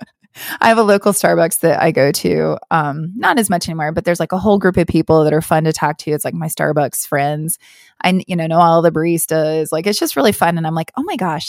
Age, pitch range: 20-39, 160-210 Hz